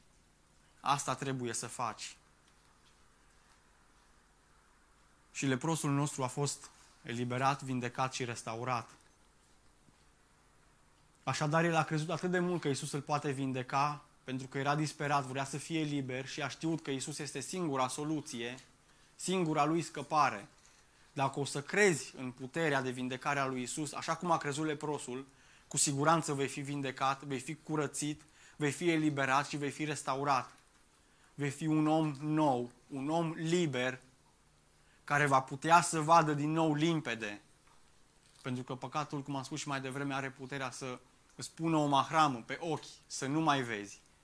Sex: male